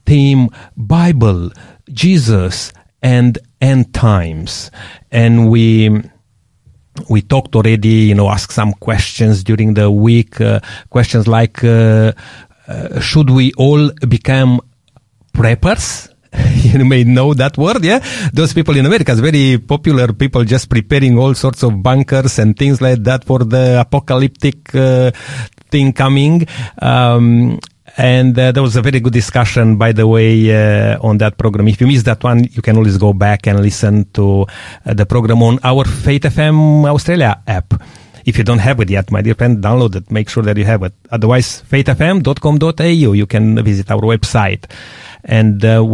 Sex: male